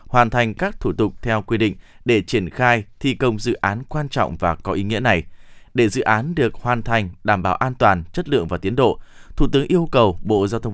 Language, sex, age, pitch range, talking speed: Vietnamese, male, 20-39, 100-130 Hz, 245 wpm